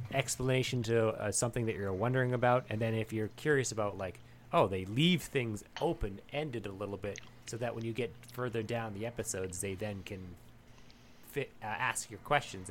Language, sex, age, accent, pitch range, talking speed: English, male, 30-49, American, 100-120 Hz, 190 wpm